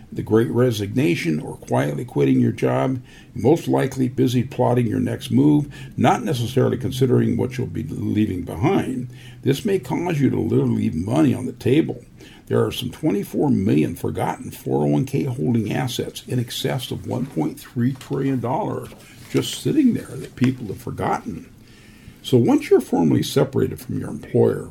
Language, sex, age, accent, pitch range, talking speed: English, male, 50-69, American, 110-130 Hz, 155 wpm